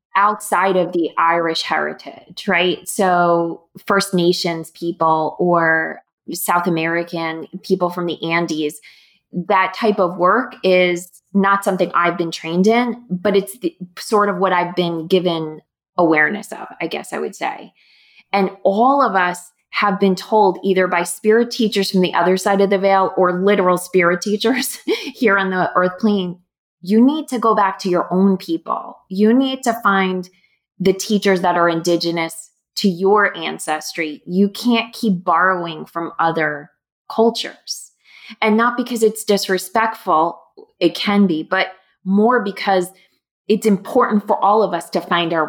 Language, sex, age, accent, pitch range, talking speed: English, female, 20-39, American, 170-205 Hz, 155 wpm